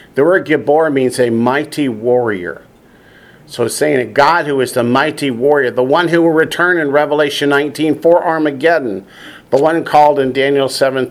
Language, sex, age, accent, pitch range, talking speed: English, male, 50-69, American, 125-160 Hz, 175 wpm